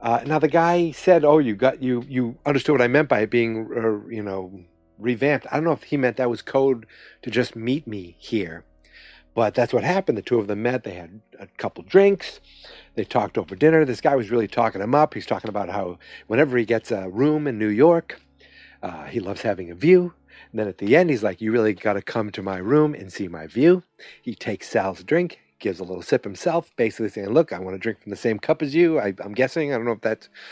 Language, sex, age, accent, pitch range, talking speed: English, male, 50-69, American, 110-150 Hz, 250 wpm